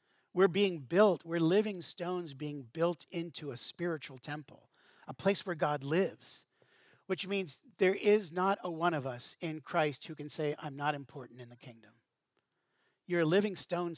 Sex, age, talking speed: male, 50-69, 175 wpm